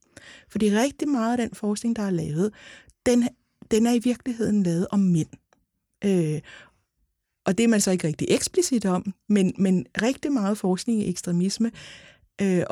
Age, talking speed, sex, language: 60-79, 165 wpm, female, Danish